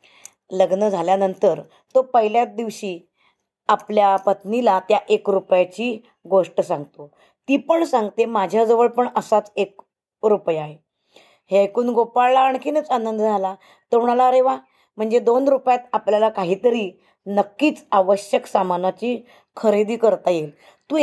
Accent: native